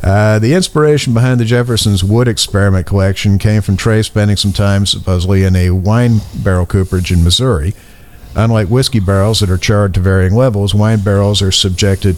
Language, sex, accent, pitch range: English, male, American, 90-105 Hz